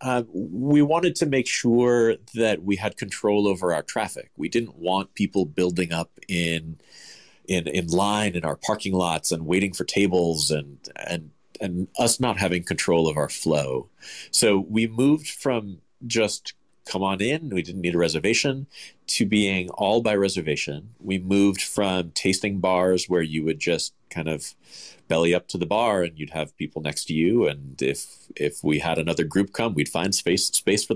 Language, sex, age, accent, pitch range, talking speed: English, male, 40-59, American, 85-115 Hz, 185 wpm